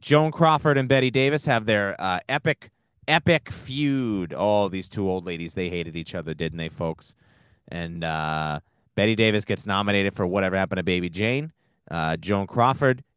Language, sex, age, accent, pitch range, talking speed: English, male, 30-49, American, 95-120 Hz, 175 wpm